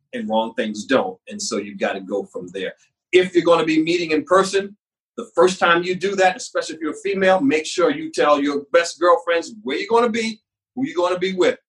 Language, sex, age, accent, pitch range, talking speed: English, male, 40-59, American, 160-250 Hz, 250 wpm